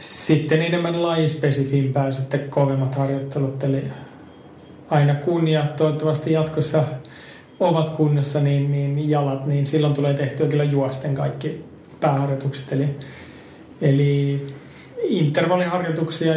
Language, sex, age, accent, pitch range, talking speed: Finnish, male, 30-49, native, 140-150 Hz, 100 wpm